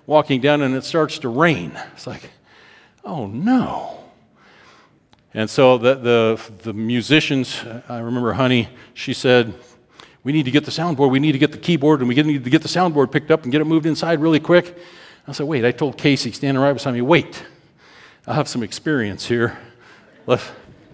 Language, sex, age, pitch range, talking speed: English, male, 50-69, 120-170 Hz, 190 wpm